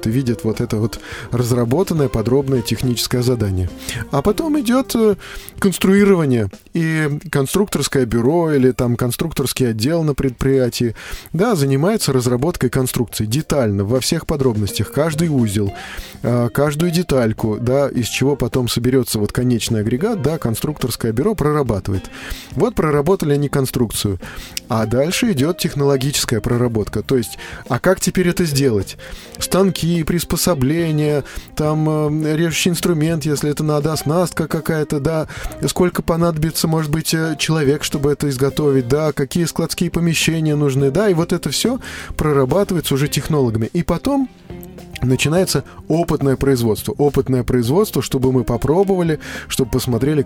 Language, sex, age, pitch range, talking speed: Russian, male, 20-39, 125-165 Hz, 125 wpm